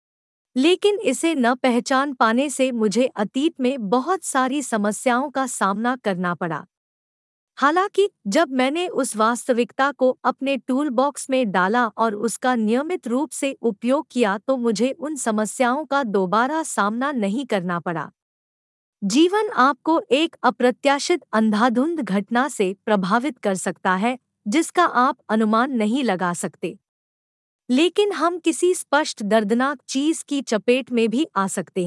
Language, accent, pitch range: Hindi, native, 215-290 Hz